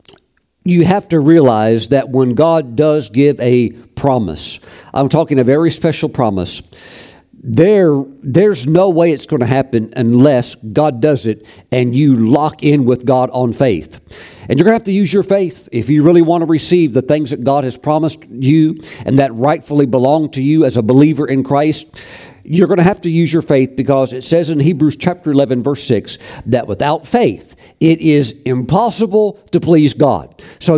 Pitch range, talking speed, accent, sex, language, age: 130-170 Hz, 185 wpm, American, male, English, 50-69